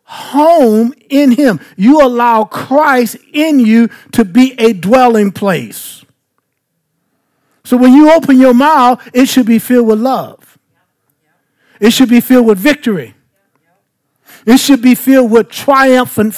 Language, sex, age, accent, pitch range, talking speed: English, male, 50-69, American, 220-275 Hz, 135 wpm